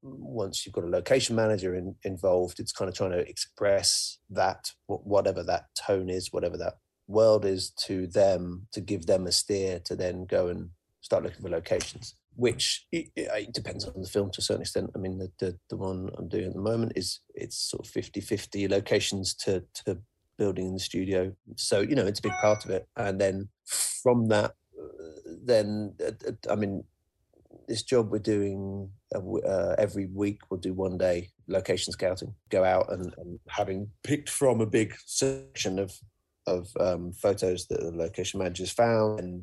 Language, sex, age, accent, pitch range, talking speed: English, male, 30-49, British, 90-105 Hz, 185 wpm